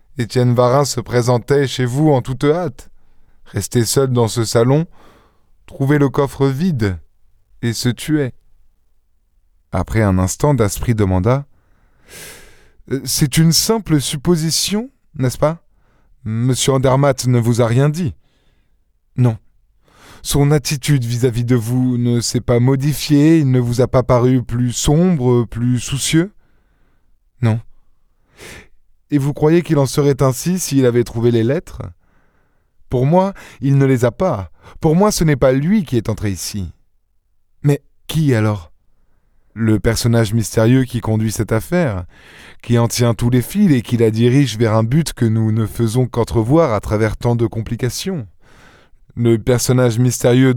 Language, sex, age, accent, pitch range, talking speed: French, male, 20-39, French, 110-140 Hz, 150 wpm